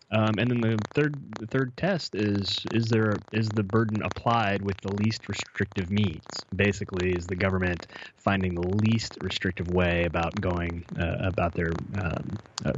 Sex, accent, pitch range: male, American, 90-110 Hz